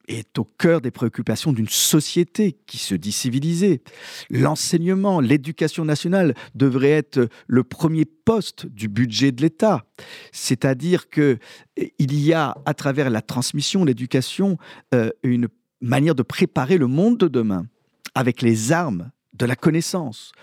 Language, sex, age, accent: French, male, 50-69, French